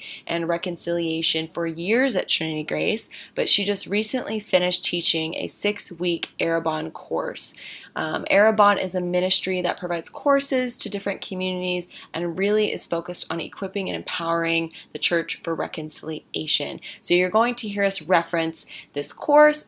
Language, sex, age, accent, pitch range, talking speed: English, female, 20-39, American, 165-190 Hz, 150 wpm